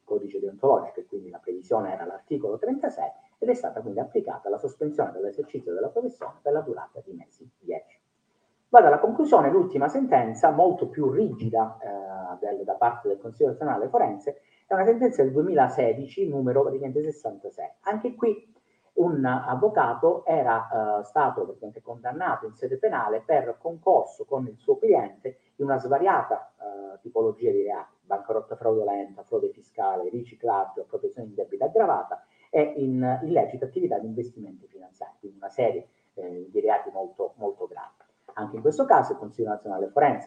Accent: native